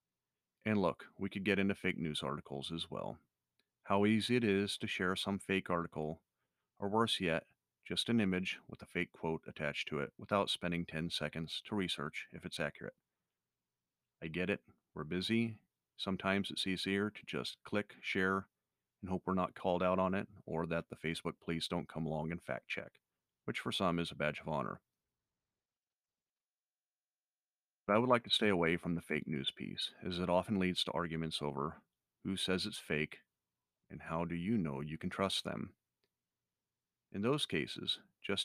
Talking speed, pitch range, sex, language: 185 wpm, 80-100 Hz, male, English